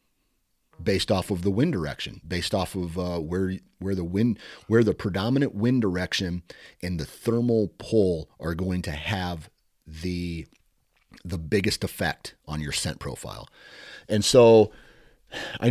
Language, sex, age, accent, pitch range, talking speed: English, male, 40-59, American, 85-110 Hz, 145 wpm